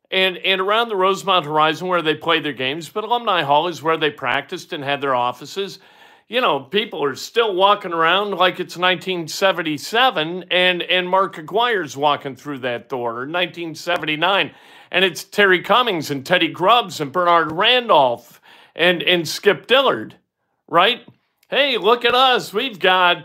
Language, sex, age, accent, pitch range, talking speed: English, male, 50-69, American, 150-215 Hz, 165 wpm